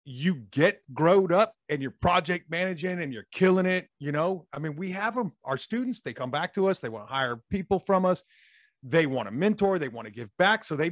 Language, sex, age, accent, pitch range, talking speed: English, male, 40-59, American, 150-205 Hz, 240 wpm